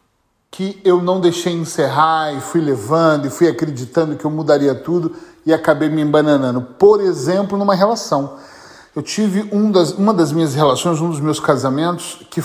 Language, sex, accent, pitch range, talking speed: Portuguese, male, Brazilian, 145-180 Hz, 165 wpm